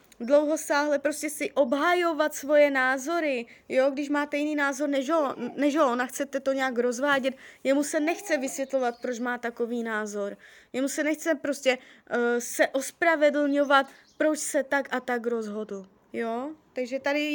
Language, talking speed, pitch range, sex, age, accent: Czech, 155 wpm, 250-295 Hz, female, 20-39, native